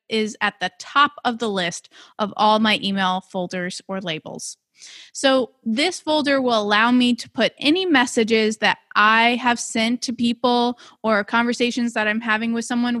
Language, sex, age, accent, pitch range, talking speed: English, female, 20-39, American, 205-255 Hz, 170 wpm